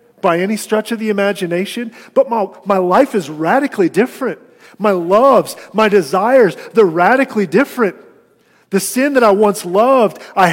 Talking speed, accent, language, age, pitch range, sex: 155 wpm, American, English, 40-59, 160-225 Hz, male